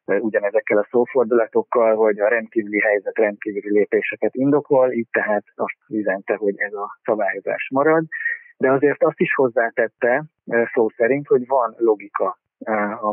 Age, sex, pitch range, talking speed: 30-49, male, 110-150 Hz, 135 wpm